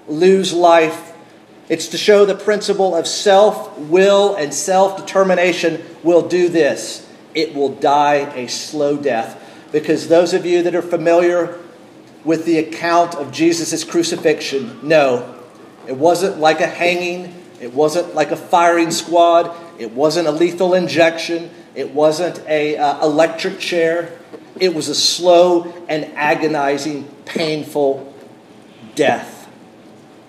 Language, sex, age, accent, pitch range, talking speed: English, male, 40-59, American, 155-190 Hz, 125 wpm